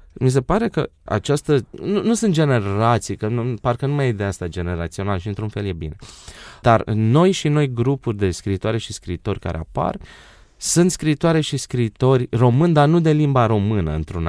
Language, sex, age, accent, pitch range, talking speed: Romanian, male, 20-39, native, 95-145 Hz, 185 wpm